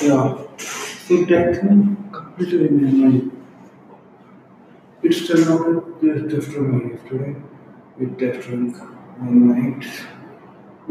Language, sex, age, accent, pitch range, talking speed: English, male, 60-79, Indian, 125-155 Hz, 110 wpm